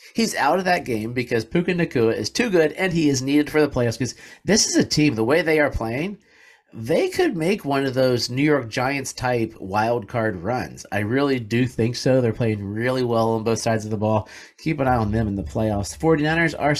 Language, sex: English, male